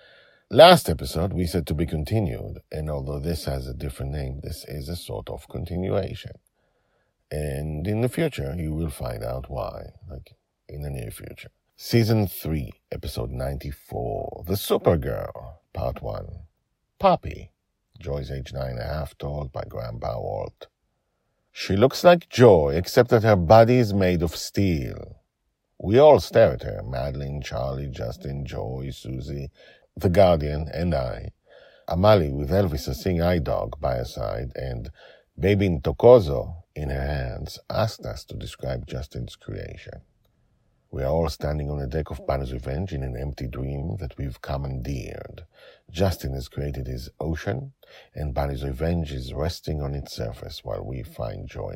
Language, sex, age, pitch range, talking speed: English, male, 50-69, 70-90 Hz, 155 wpm